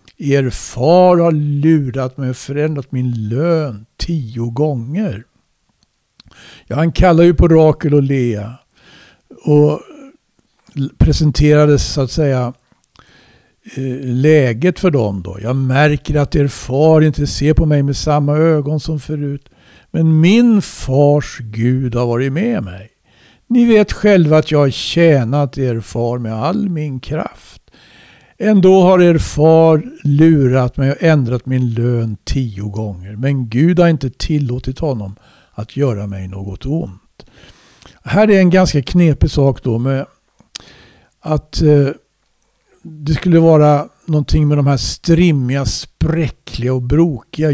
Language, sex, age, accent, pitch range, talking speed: Swedish, male, 60-79, native, 125-160 Hz, 135 wpm